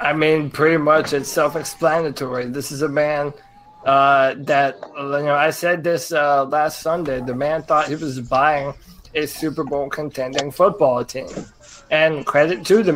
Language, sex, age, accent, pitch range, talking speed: English, male, 20-39, American, 140-170 Hz, 165 wpm